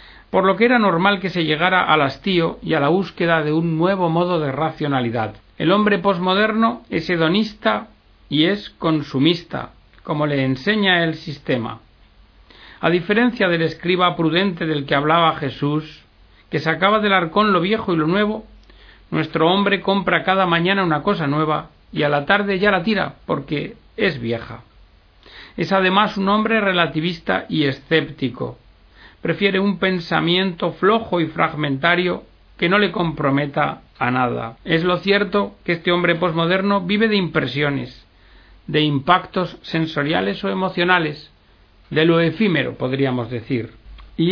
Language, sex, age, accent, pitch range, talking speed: Spanish, male, 60-79, Spanish, 140-190 Hz, 150 wpm